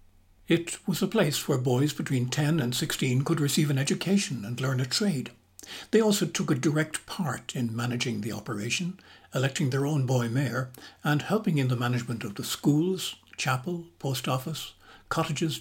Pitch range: 120-155 Hz